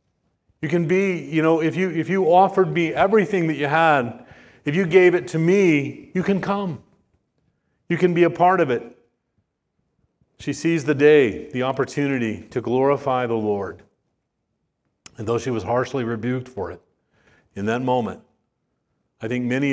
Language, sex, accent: English, male, American